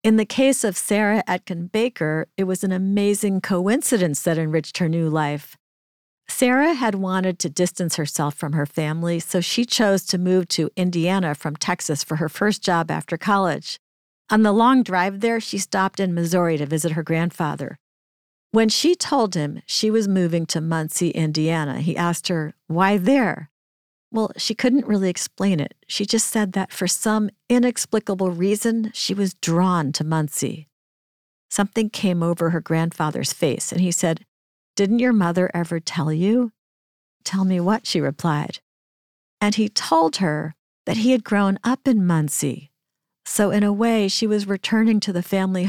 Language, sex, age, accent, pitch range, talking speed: English, female, 50-69, American, 165-215 Hz, 170 wpm